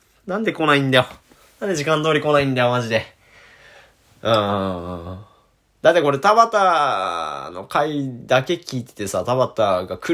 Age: 20-39